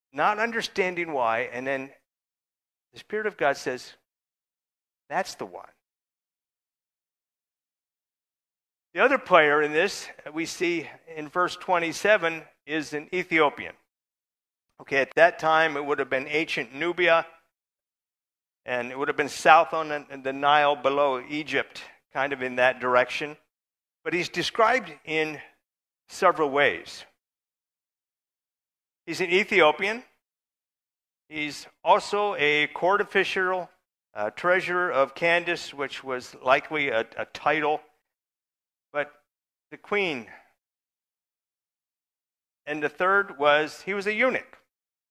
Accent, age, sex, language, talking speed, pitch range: American, 50-69, male, English, 120 wpm, 140-180 Hz